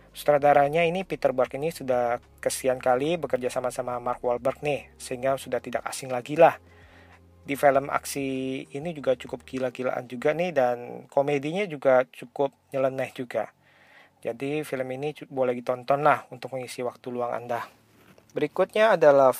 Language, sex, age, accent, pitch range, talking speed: Indonesian, male, 40-59, native, 125-145 Hz, 145 wpm